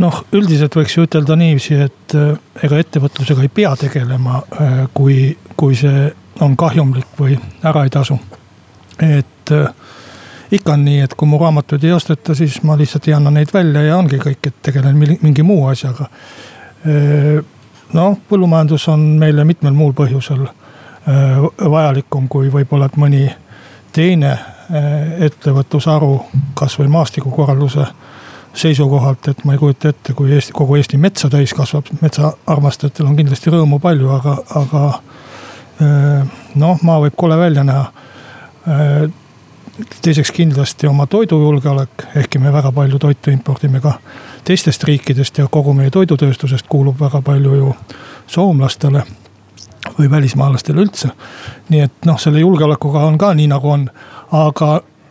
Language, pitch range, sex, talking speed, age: Finnish, 135-155 Hz, male, 125 wpm, 60-79